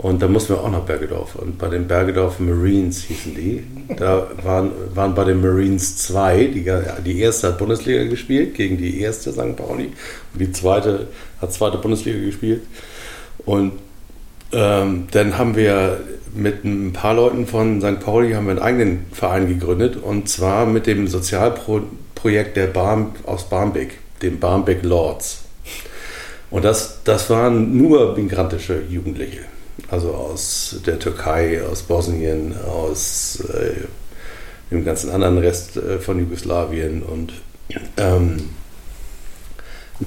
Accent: German